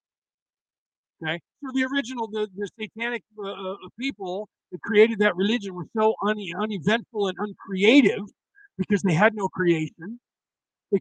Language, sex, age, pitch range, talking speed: English, male, 50-69, 185-225 Hz, 140 wpm